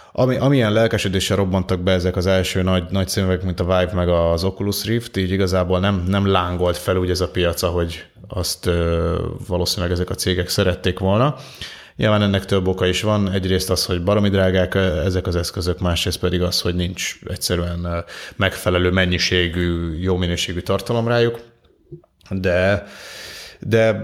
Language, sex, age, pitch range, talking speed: Hungarian, male, 30-49, 90-105 Hz, 160 wpm